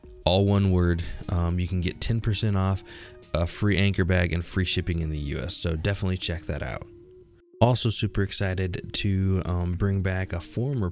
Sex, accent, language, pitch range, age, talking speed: male, American, English, 85-100 Hz, 20-39, 185 wpm